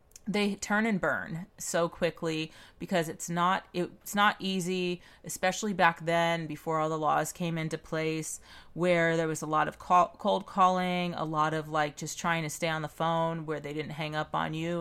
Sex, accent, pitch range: female, American, 160-180 Hz